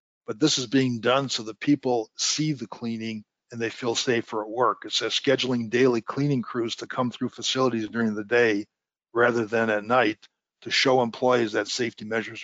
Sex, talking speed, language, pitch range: male, 195 wpm, English, 115-130 Hz